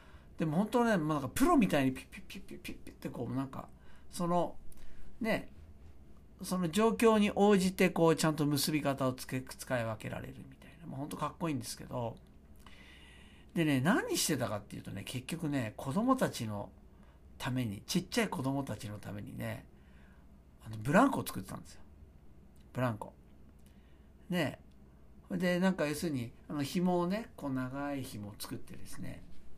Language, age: Japanese, 60-79